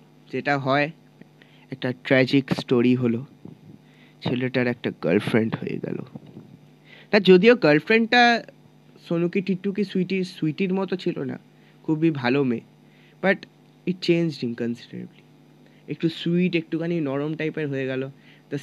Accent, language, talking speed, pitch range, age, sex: native, Bengali, 115 wpm, 140-170 Hz, 20-39, male